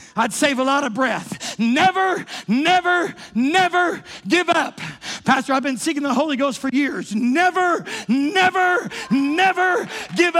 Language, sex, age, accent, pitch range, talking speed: English, male, 40-59, American, 220-365 Hz, 140 wpm